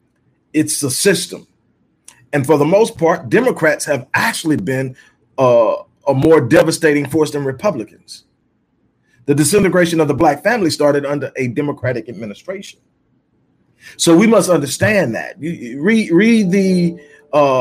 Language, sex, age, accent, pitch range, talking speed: English, male, 40-59, American, 120-155 Hz, 140 wpm